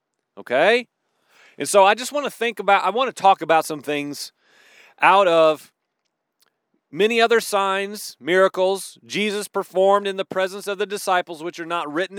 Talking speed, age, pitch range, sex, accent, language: 165 wpm, 40-59, 170-230 Hz, male, American, English